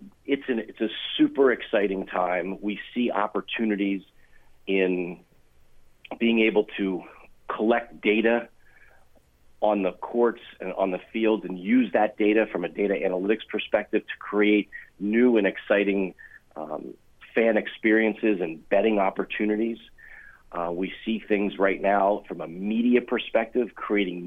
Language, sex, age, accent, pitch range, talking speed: English, male, 40-59, American, 95-115 Hz, 130 wpm